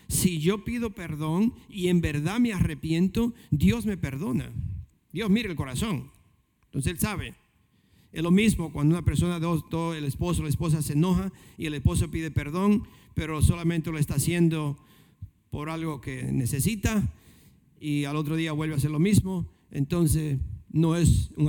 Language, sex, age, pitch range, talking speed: Spanish, male, 50-69, 140-185 Hz, 165 wpm